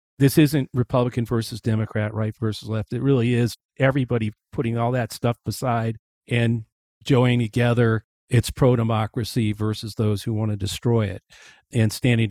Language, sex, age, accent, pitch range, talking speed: English, male, 50-69, American, 115-130 Hz, 150 wpm